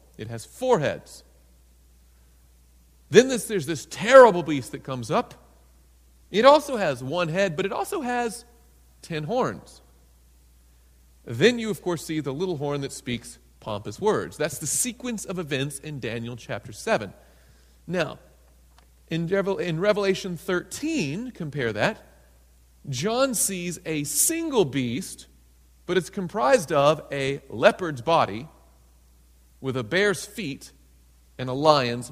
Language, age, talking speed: English, 40-59, 130 wpm